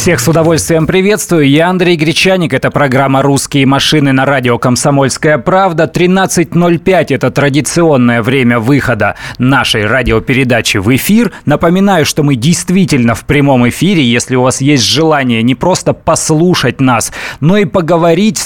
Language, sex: Russian, male